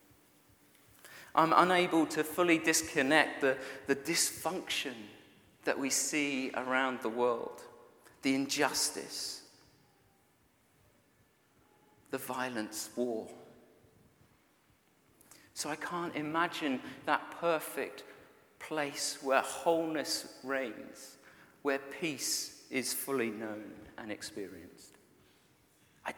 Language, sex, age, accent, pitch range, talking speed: English, male, 40-59, British, 130-155 Hz, 85 wpm